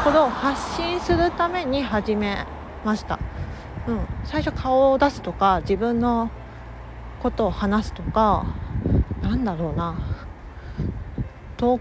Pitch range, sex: 195-295 Hz, female